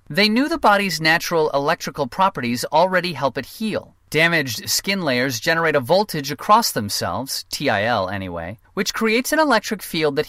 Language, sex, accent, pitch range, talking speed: English, male, American, 130-185 Hz, 155 wpm